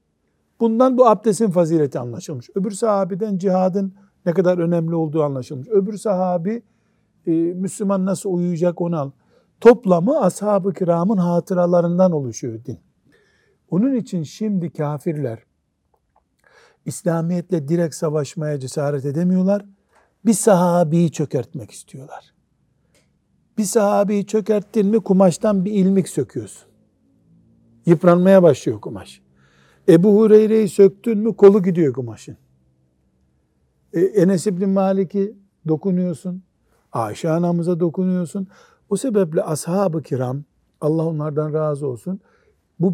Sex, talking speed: male, 105 wpm